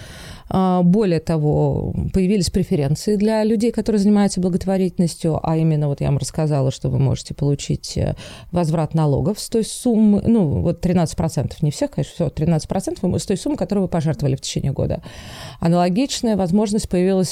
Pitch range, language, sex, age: 155-200 Hz, Russian, female, 30-49